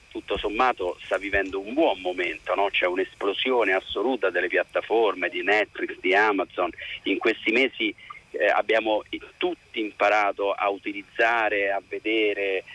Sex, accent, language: male, native, Italian